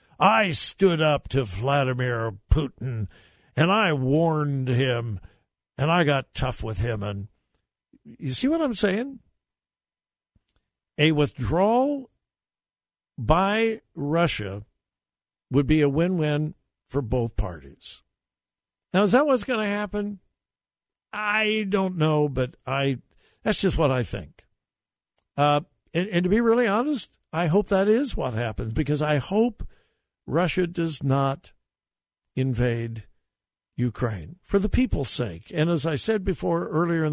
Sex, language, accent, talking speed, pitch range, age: male, English, American, 135 wpm, 125-185 Hz, 60-79